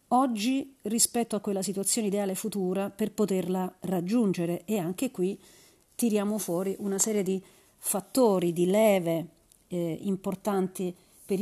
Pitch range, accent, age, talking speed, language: 180-220 Hz, native, 40-59, 125 wpm, Italian